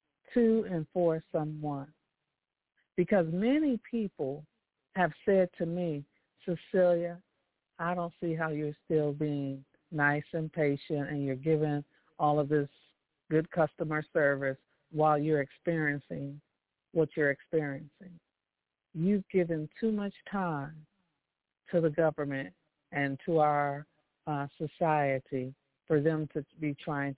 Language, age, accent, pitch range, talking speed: English, 50-69, American, 150-180 Hz, 120 wpm